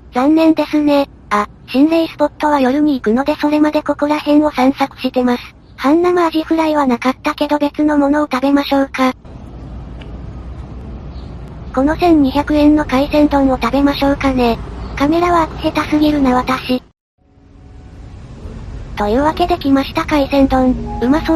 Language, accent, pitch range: Japanese, American, 250-300 Hz